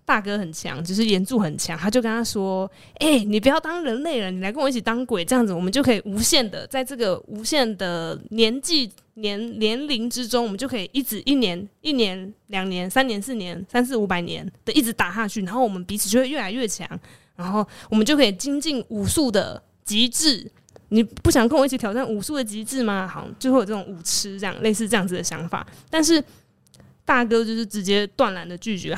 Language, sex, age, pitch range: Chinese, female, 20-39, 190-260 Hz